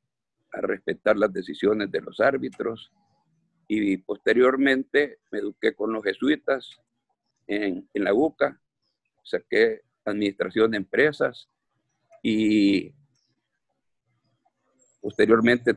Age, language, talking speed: 50-69, Spanish, 90 wpm